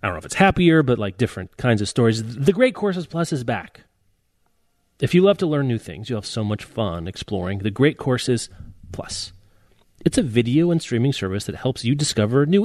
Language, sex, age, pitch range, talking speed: English, male, 30-49, 105-145 Hz, 220 wpm